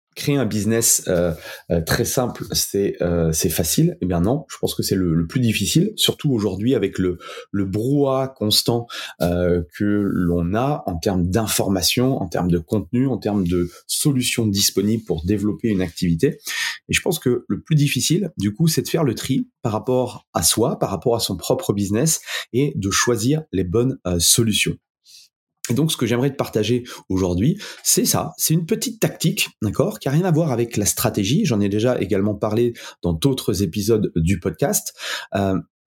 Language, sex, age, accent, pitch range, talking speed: French, male, 30-49, French, 95-135 Hz, 190 wpm